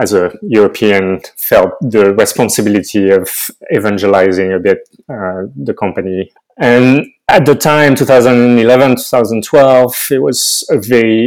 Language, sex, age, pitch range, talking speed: English, male, 30-49, 100-125 Hz, 120 wpm